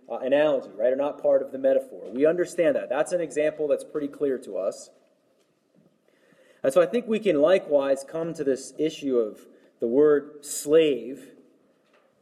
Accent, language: American, English